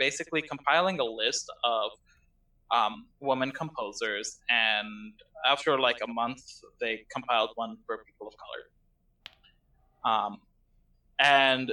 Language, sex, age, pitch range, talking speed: English, male, 20-39, 115-145 Hz, 115 wpm